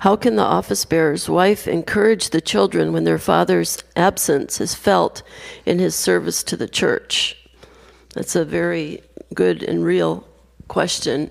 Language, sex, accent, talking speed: English, female, American, 150 wpm